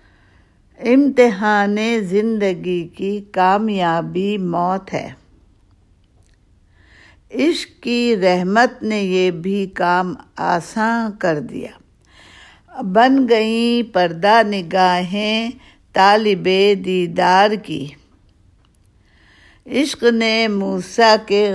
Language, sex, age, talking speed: Urdu, female, 60-79, 75 wpm